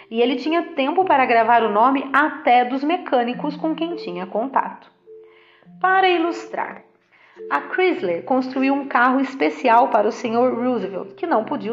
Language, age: Portuguese, 40-59